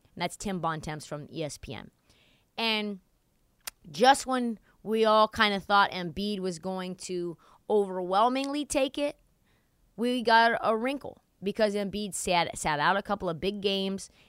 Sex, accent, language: female, American, English